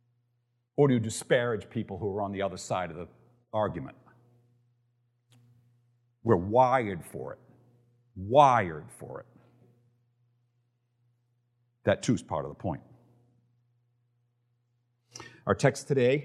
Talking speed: 110 wpm